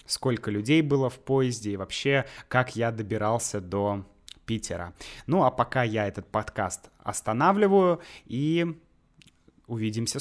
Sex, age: male, 20-39